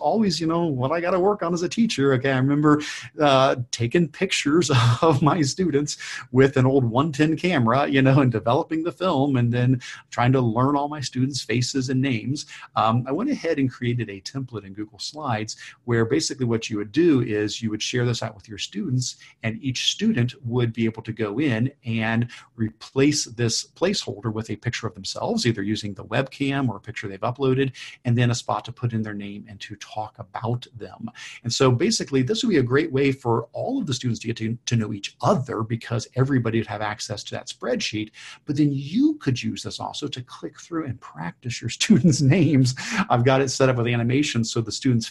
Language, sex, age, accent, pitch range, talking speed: English, male, 50-69, American, 115-140 Hz, 220 wpm